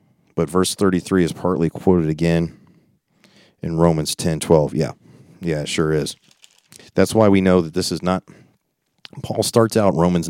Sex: male